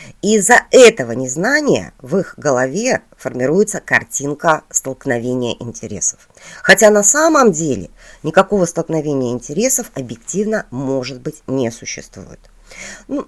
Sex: female